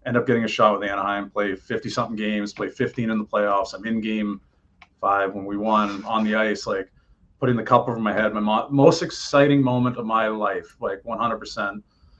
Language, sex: English, male